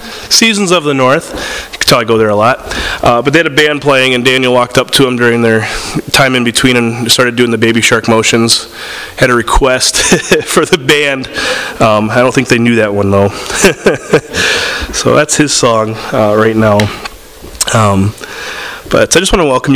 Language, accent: English, American